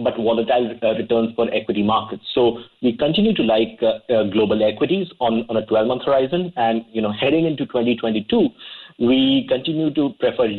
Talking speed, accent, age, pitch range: 175 wpm, Indian, 30-49, 110-130 Hz